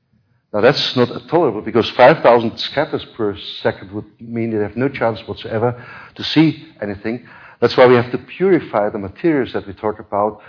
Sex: male